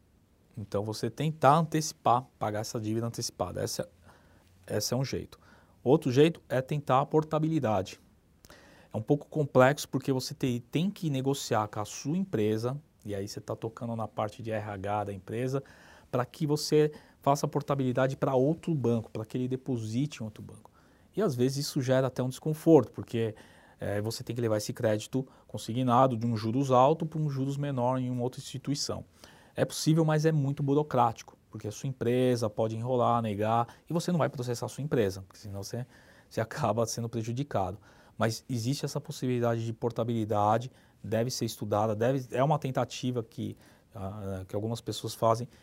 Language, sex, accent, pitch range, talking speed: Portuguese, male, Brazilian, 110-135 Hz, 175 wpm